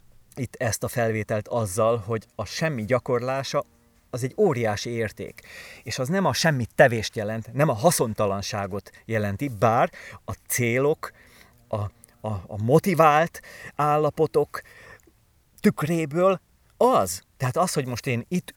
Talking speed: 125 wpm